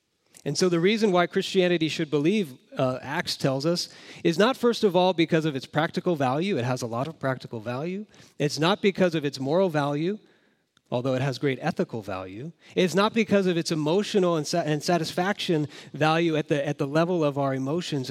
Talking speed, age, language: 190 wpm, 40-59, English